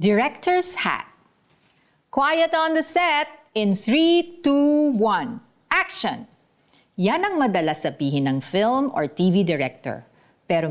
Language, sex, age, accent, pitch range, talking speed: Filipino, female, 50-69, native, 155-230 Hz, 120 wpm